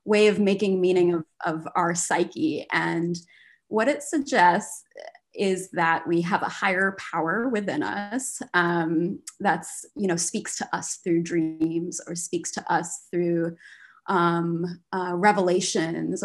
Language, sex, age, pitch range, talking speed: English, female, 20-39, 180-230 Hz, 140 wpm